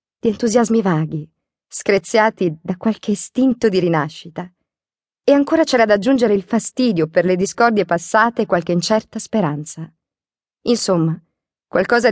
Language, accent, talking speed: Italian, native, 130 wpm